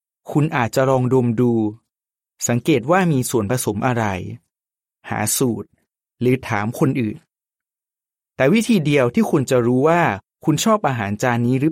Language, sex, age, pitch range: Thai, male, 30-49, 115-160 Hz